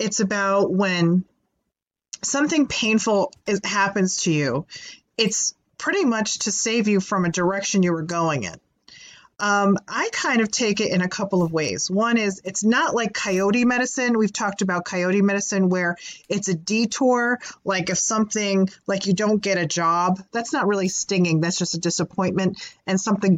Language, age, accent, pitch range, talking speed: English, 30-49, American, 185-230 Hz, 170 wpm